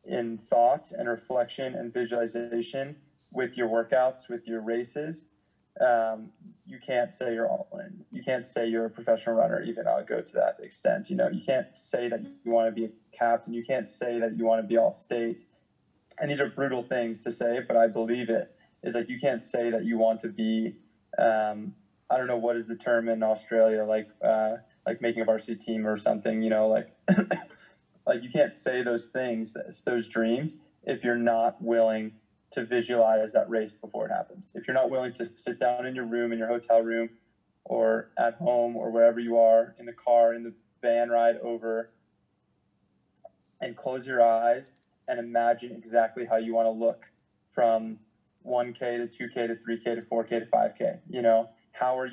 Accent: American